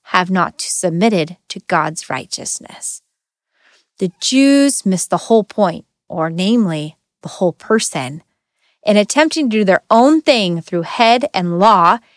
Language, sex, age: English, female, 30-49